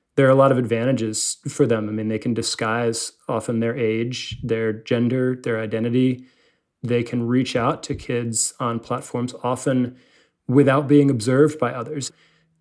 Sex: male